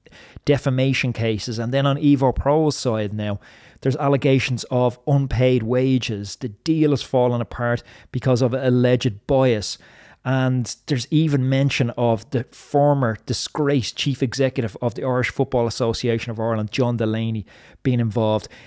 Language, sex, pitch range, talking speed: English, male, 110-135 Hz, 140 wpm